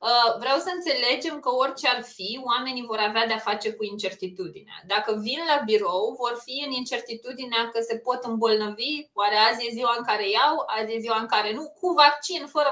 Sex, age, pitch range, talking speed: female, 20-39, 235-320 Hz, 200 wpm